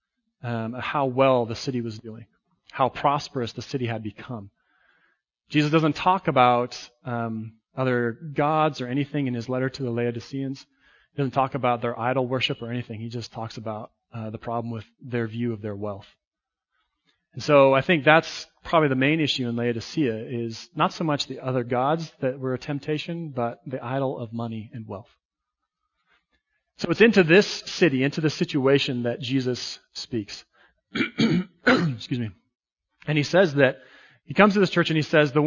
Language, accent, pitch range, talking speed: English, American, 115-150 Hz, 180 wpm